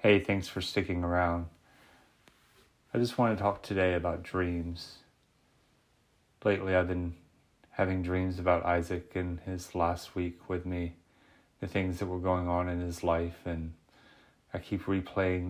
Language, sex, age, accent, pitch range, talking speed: English, male, 30-49, American, 85-95 Hz, 150 wpm